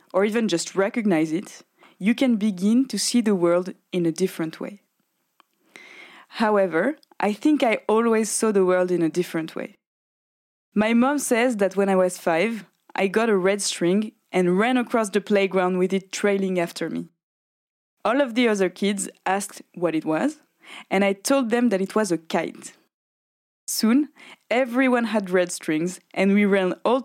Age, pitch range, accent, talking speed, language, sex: 20-39, 185-240 Hz, French, 175 wpm, French, female